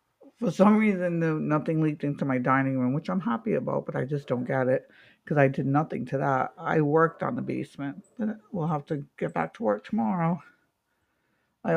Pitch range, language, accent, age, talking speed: 145-185 Hz, English, American, 60-79, 200 wpm